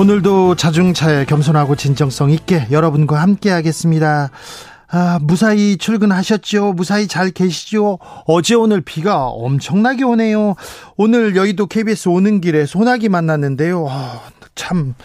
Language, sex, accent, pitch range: Korean, male, native, 150-200 Hz